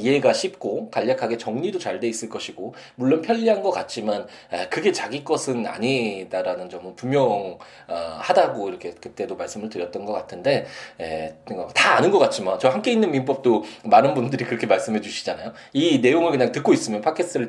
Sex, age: male, 20-39